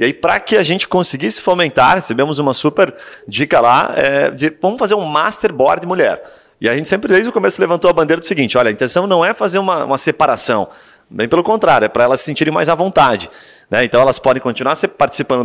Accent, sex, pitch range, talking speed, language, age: Brazilian, male, 125-175 Hz, 225 wpm, Portuguese, 30-49